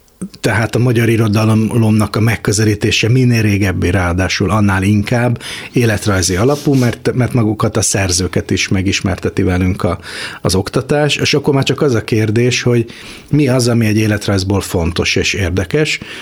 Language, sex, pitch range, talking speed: Hungarian, male, 95-115 Hz, 150 wpm